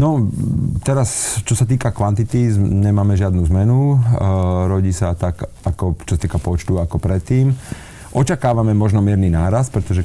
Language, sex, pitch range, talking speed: Slovak, male, 90-105 Hz, 150 wpm